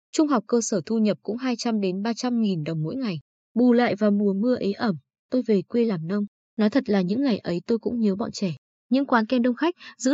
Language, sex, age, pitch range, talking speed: Vietnamese, female, 20-39, 190-250 Hz, 245 wpm